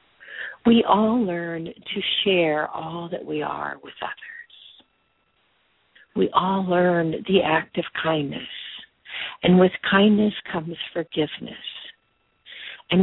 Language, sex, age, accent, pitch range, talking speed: English, female, 50-69, American, 160-205 Hz, 110 wpm